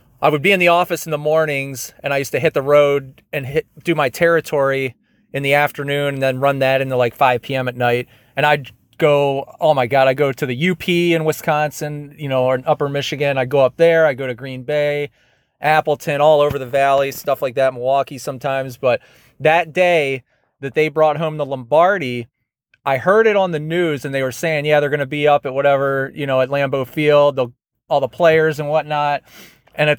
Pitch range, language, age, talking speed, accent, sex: 135-165 Hz, English, 30-49, 225 wpm, American, male